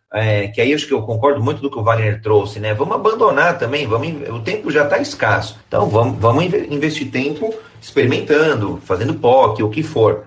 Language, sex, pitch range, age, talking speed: Portuguese, male, 105-135 Hz, 30-49, 205 wpm